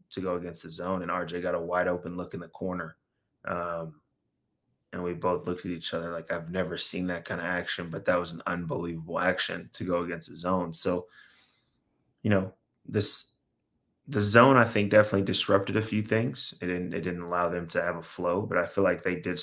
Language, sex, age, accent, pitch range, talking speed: English, male, 20-39, American, 90-100 Hz, 220 wpm